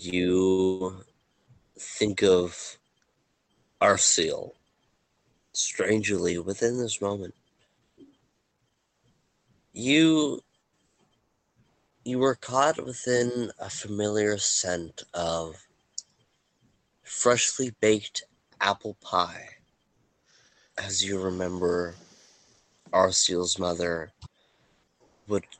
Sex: male